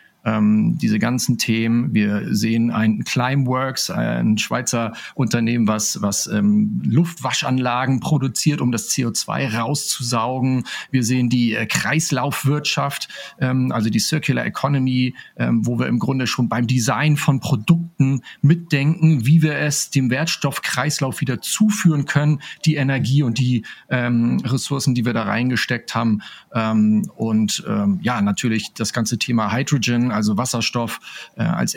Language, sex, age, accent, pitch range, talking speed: German, male, 40-59, German, 115-150 Hz, 140 wpm